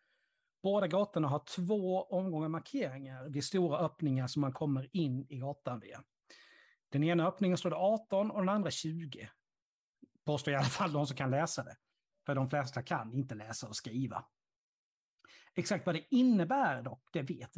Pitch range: 135-175 Hz